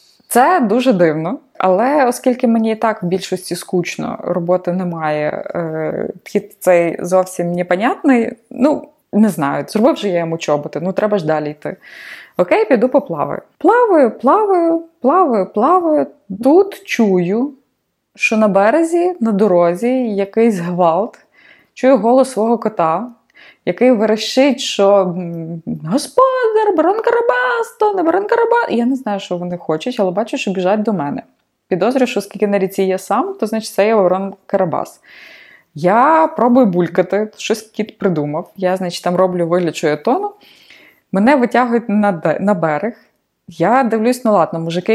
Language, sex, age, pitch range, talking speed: Ukrainian, female, 20-39, 185-275 Hz, 140 wpm